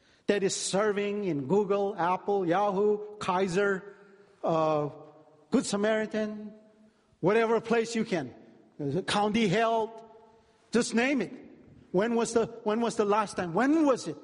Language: English